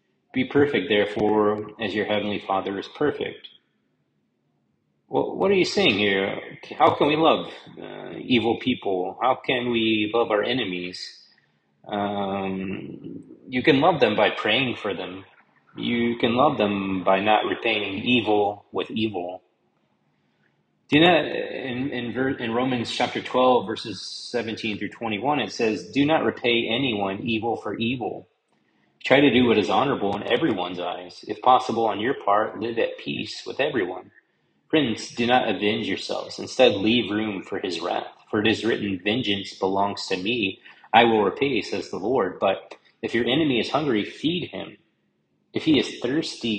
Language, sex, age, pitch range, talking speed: English, male, 30-49, 100-125 Hz, 155 wpm